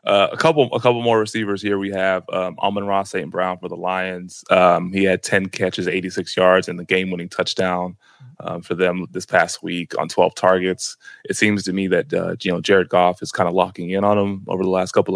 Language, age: English, 20-39